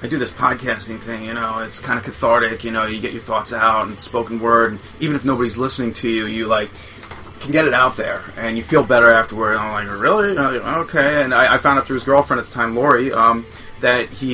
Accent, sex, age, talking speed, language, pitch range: American, male, 30-49, 245 wpm, English, 110-125 Hz